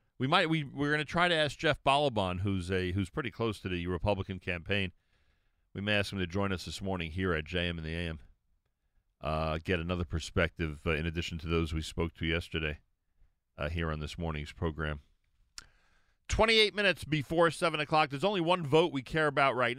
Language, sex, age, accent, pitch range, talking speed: English, male, 40-59, American, 90-135 Hz, 205 wpm